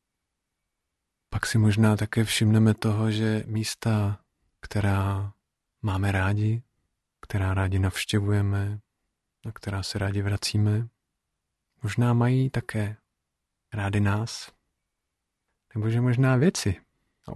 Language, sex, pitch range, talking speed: Czech, male, 95-110 Hz, 95 wpm